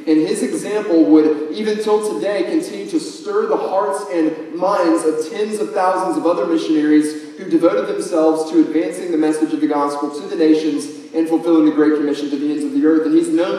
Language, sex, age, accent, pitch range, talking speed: English, male, 30-49, American, 150-240 Hz, 210 wpm